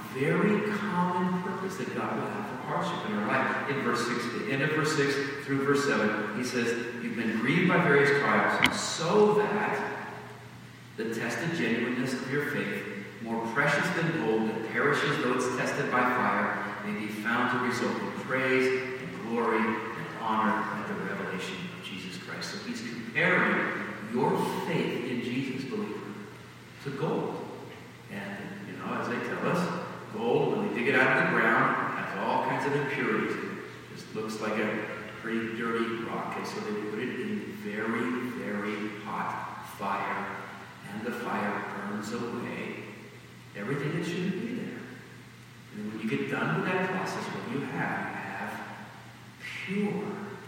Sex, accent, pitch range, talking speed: male, American, 110-155 Hz, 165 wpm